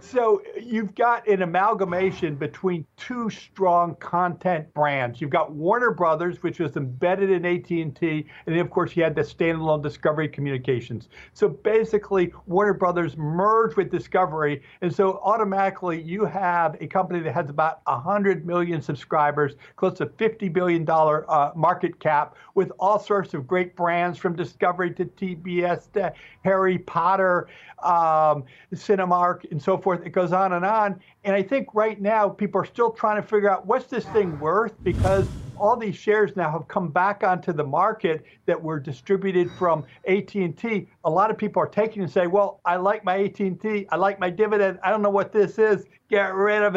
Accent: American